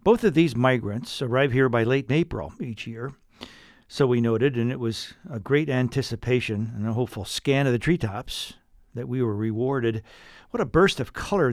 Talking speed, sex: 185 wpm, male